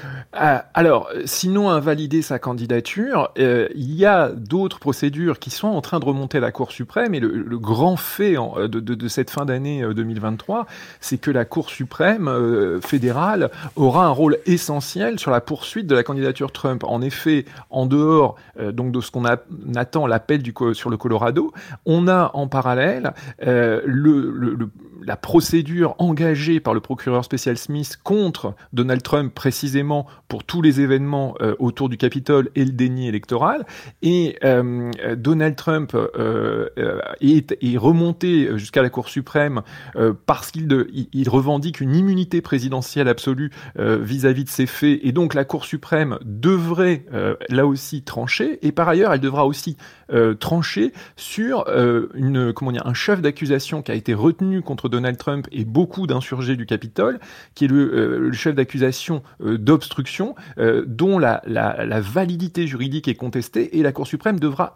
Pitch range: 125-160 Hz